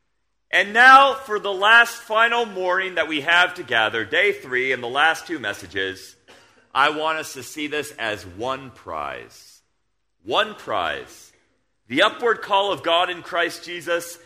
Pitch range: 150-215 Hz